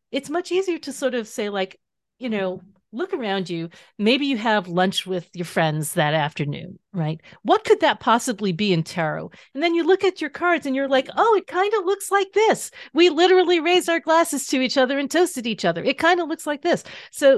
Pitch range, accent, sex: 175-270 Hz, American, female